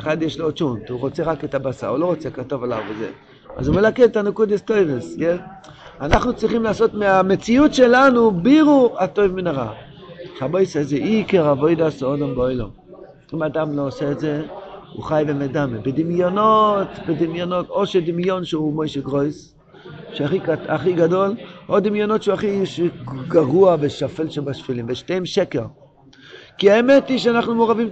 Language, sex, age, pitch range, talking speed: Hebrew, male, 50-69, 140-200 Hz, 150 wpm